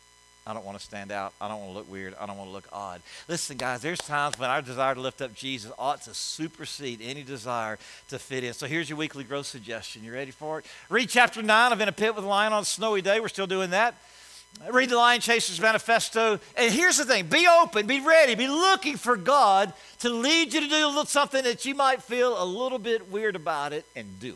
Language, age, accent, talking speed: English, 50-69, American, 250 wpm